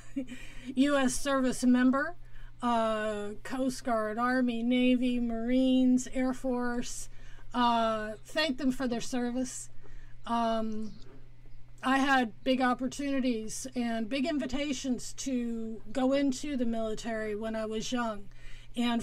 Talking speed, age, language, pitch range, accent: 110 wpm, 40-59, English, 225-255 Hz, American